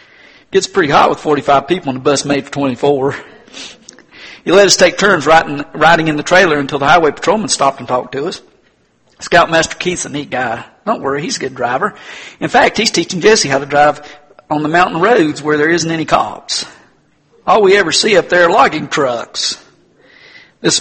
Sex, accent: male, American